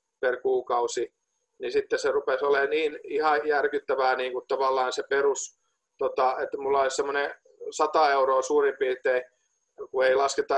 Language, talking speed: Finnish, 145 wpm